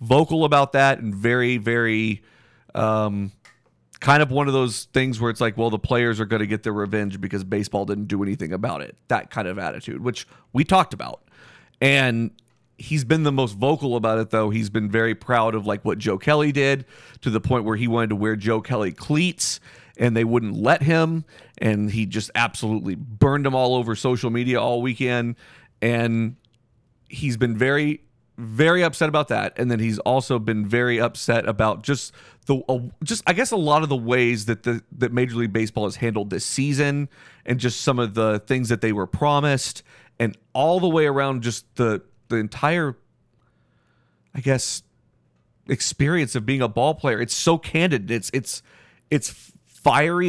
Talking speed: 190 wpm